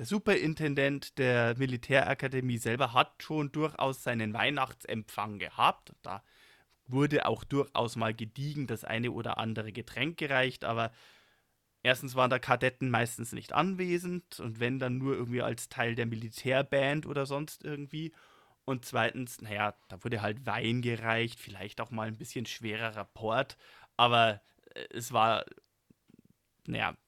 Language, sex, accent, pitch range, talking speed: German, male, German, 115-140 Hz, 135 wpm